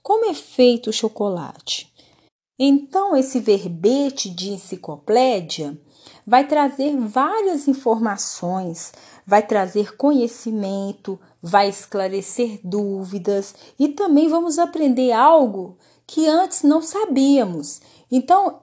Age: 30-49